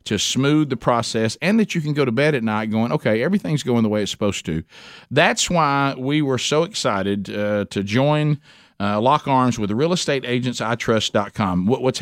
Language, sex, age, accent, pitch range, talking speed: English, male, 50-69, American, 100-130 Hz, 200 wpm